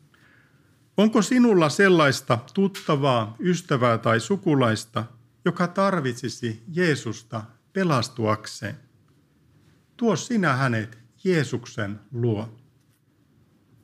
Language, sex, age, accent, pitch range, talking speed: Finnish, male, 50-69, native, 120-170 Hz, 70 wpm